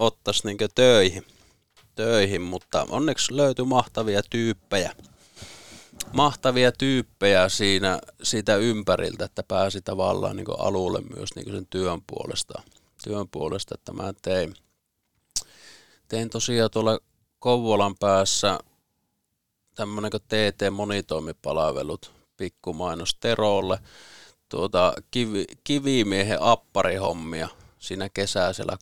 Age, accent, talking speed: 30-49, native, 90 wpm